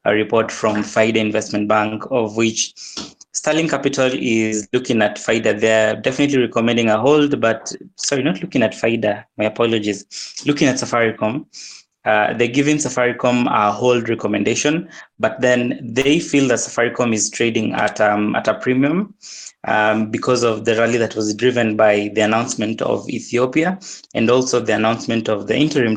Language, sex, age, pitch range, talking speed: English, male, 20-39, 110-130 Hz, 160 wpm